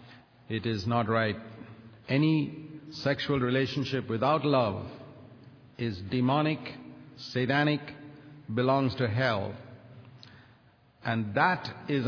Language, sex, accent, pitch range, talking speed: English, male, Indian, 120-145 Hz, 90 wpm